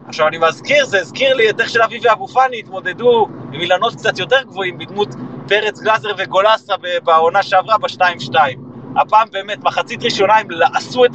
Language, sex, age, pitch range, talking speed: Hebrew, male, 30-49, 175-235 Hz, 165 wpm